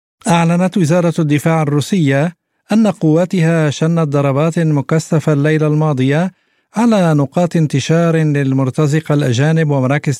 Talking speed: 100 wpm